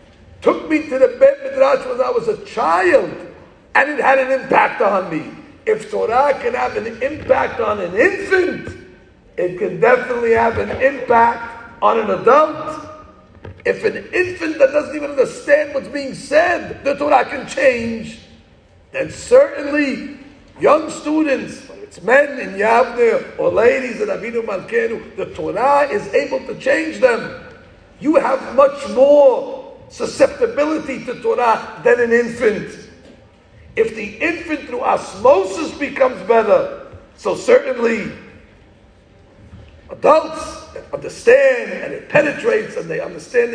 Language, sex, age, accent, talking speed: English, male, 50-69, American, 130 wpm